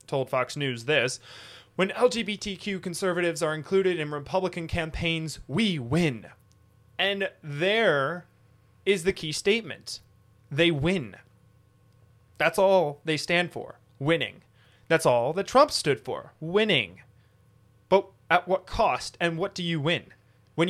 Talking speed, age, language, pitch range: 130 wpm, 20-39, English, 120-165 Hz